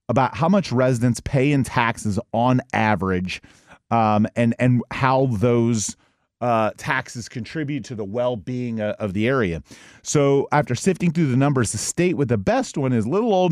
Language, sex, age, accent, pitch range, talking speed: English, male, 40-59, American, 115-145 Hz, 170 wpm